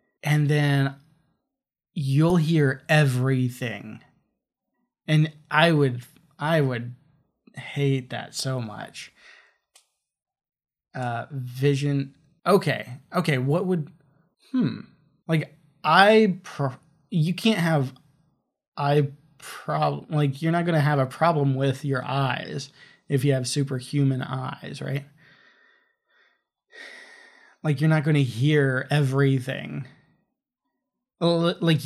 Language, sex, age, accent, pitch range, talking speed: English, male, 20-39, American, 130-160 Hz, 100 wpm